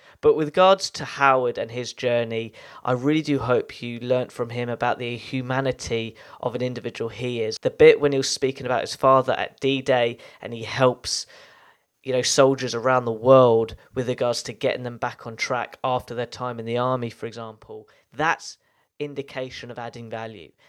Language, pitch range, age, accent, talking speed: English, 115-130 Hz, 20-39, British, 190 wpm